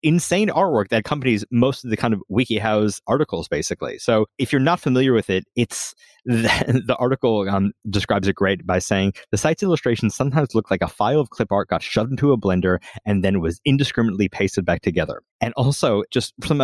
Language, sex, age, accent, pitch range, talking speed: English, male, 20-39, American, 100-125 Hz, 205 wpm